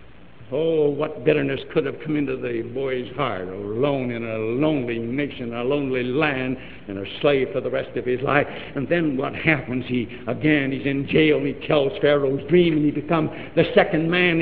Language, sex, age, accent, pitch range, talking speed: English, male, 70-89, American, 115-180 Hz, 190 wpm